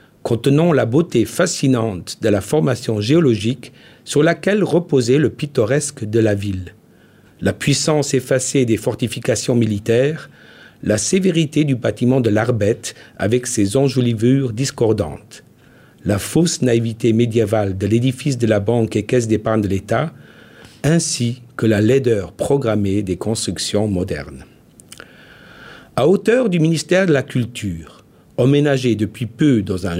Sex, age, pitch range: male, 50-69, 110-145 Hz